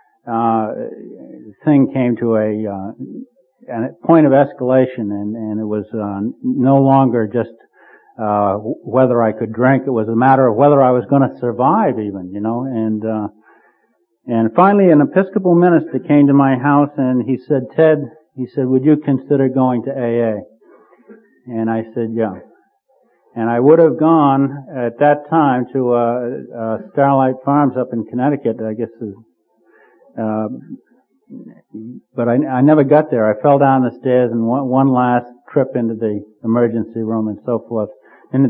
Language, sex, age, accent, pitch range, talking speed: English, male, 60-79, American, 115-155 Hz, 170 wpm